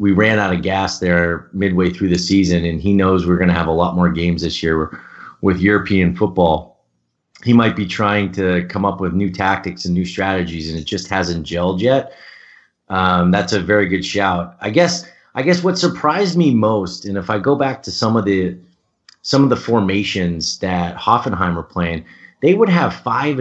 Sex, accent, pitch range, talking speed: male, American, 95-120 Hz, 205 wpm